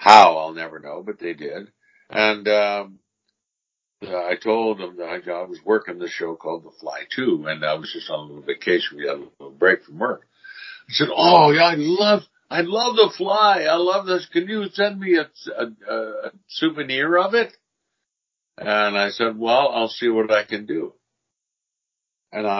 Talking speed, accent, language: 190 wpm, American, Swedish